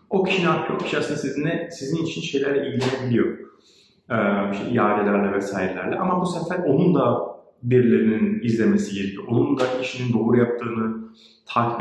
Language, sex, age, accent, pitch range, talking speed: Turkish, male, 40-59, native, 115-140 Hz, 135 wpm